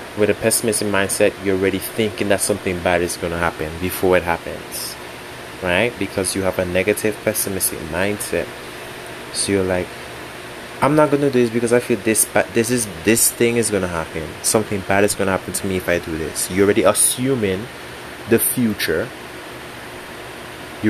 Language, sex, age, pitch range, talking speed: English, male, 20-39, 85-105 Hz, 185 wpm